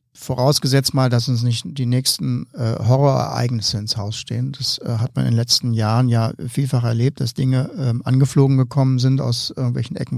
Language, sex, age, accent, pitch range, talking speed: German, male, 50-69, German, 120-145 Hz, 170 wpm